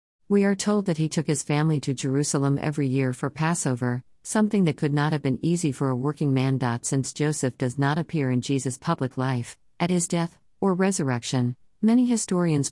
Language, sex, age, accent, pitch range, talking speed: Malayalam, female, 50-69, American, 125-155 Hz, 195 wpm